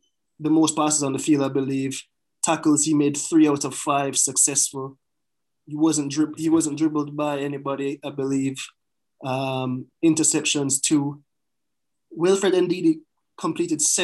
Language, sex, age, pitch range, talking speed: English, male, 20-39, 140-175 Hz, 135 wpm